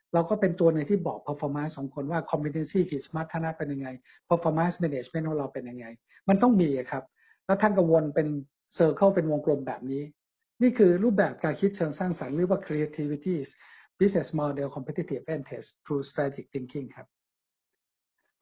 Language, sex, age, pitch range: Thai, male, 60-79, 150-180 Hz